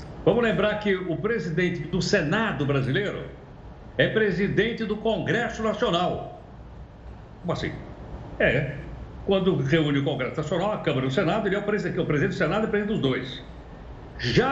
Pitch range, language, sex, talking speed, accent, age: 150-215 Hz, Portuguese, male, 155 wpm, Brazilian, 60-79